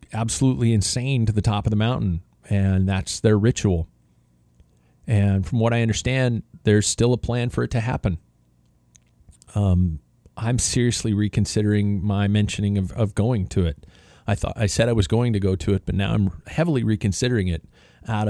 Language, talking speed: English, 175 wpm